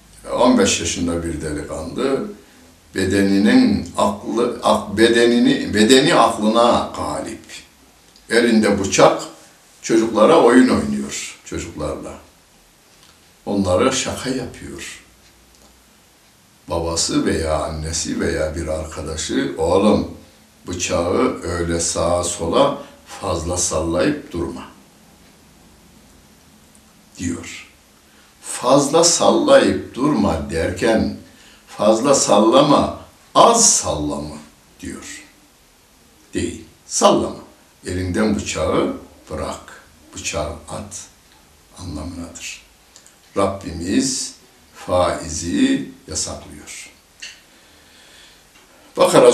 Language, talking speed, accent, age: Turkish, 65 wpm, native, 60-79